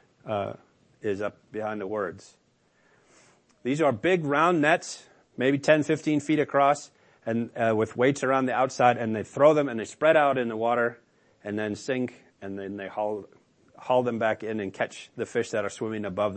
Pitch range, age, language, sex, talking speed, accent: 110-145 Hz, 40-59, English, male, 195 wpm, American